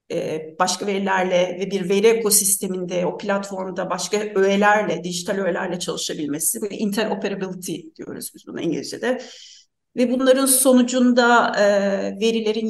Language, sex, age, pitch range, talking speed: Turkish, female, 40-59, 195-250 Hz, 110 wpm